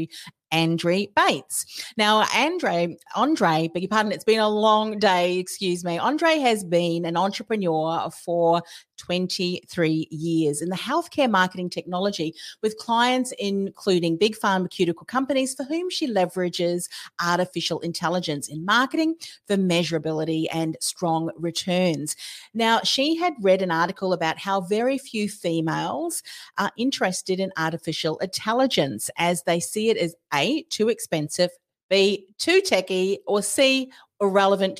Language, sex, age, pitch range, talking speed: English, female, 40-59, 170-215 Hz, 135 wpm